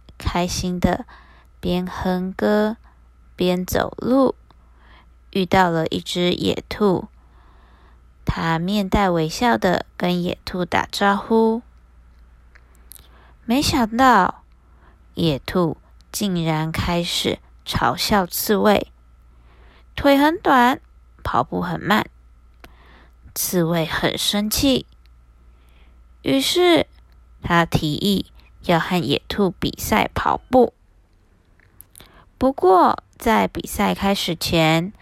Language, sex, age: Chinese, female, 20-39